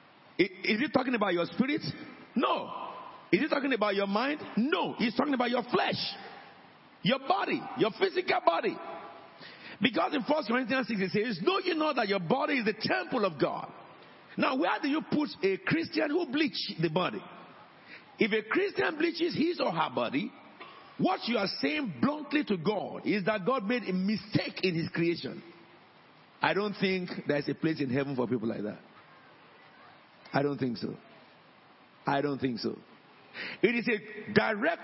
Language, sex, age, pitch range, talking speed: English, male, 50-69, 190-310 Hz, 175 wpm